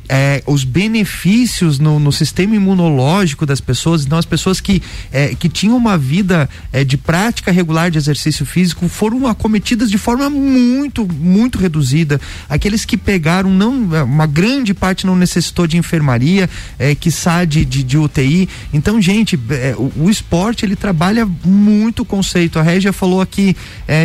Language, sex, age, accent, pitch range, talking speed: Portuguese, male, 40-59, Brazilian, 150-195 Hz, 160 wpm